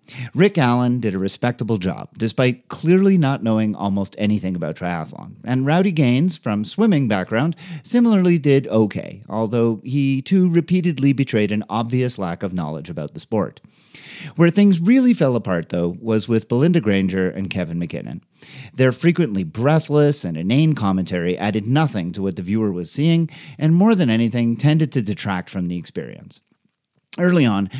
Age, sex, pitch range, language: 40-59, male, 100-160 Hz, English